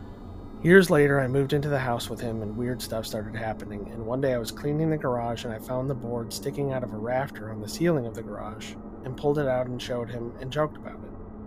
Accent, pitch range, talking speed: American, 110-130 Hz, 255 wpm